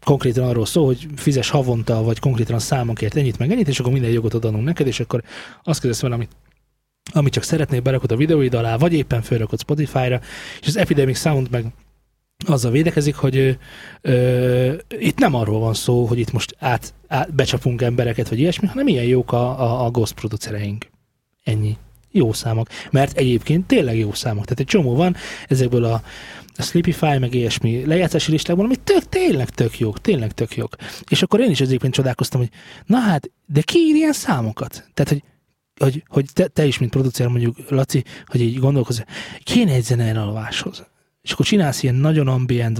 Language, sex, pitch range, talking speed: Hungarian, male, 120-150 Hz, 185 wpm